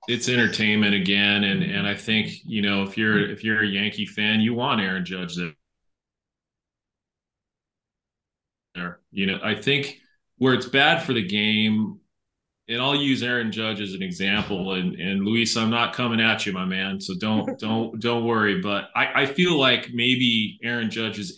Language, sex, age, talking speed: English, male, 30-49, 175 wpm